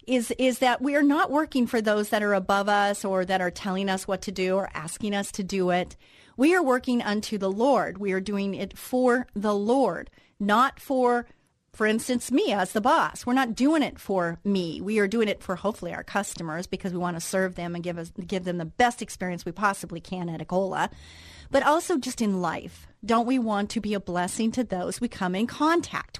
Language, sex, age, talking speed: English, female, 40-59, 225 wpm